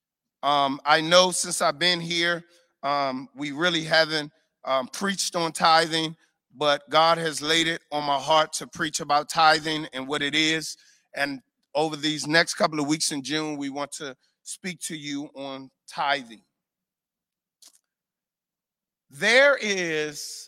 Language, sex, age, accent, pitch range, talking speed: English, male, 40-59, American, 155-205 Hz, 145 wpm